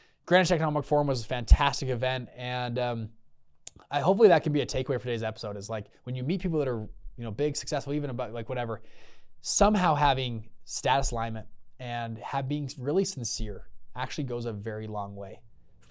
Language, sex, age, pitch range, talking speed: English, male, 20-39, 115-145 Hz, 190 wpm